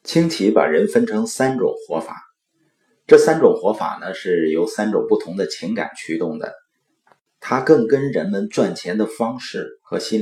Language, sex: Chinese, male